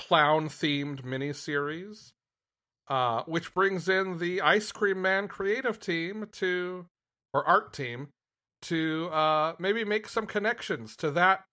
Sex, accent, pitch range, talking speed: male, American, 135-185 Hz, 125 wpm